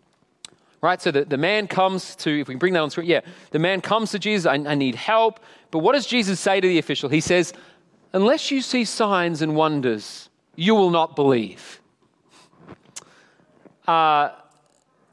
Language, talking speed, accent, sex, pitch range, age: English, 175 wpm, Australian, male, 155-215 Hz, 40-59